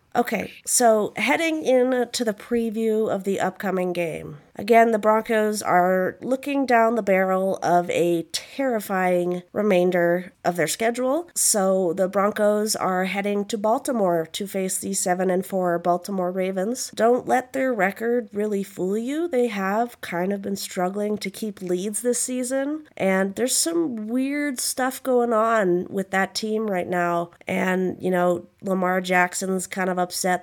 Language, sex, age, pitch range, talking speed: English, female, 30-49, 180-225 Hz, 155 wpm